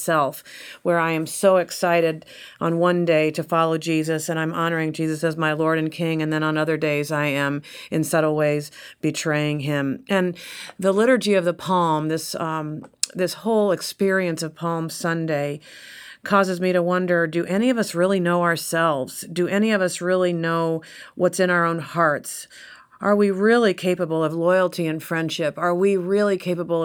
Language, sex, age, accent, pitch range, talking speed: English, female, 40-59, American, 155-180 Hz, 180 wpm